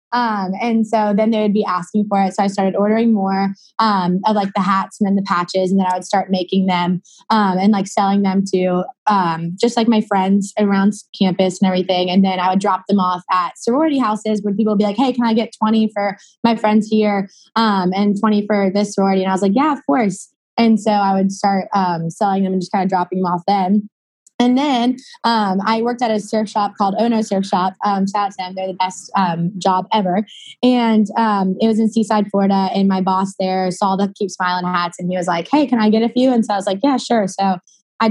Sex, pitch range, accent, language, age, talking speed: female, 190-220 Hz, American, English, 20-39, 250 wpm